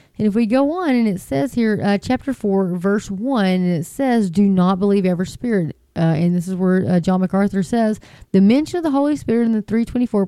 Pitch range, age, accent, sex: 175-215 Hz, 30-49, American, female